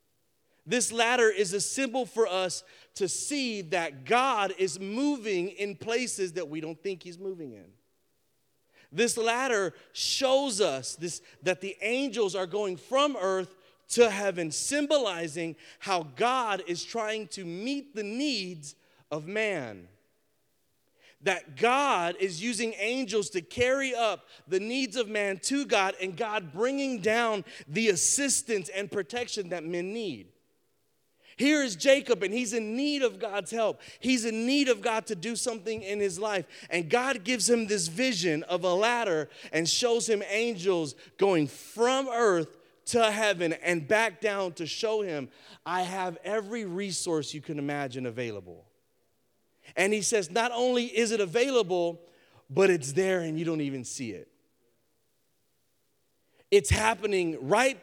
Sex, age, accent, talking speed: male, 30-49, American, 150 wpm